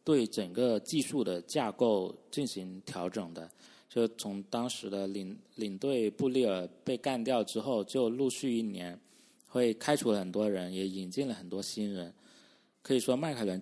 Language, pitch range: Chinese, 100-120 Hz